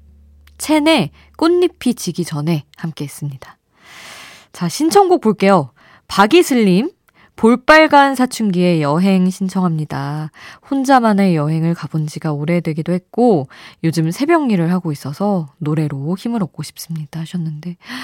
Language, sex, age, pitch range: Korean, female, 20-39, 155-210 Hz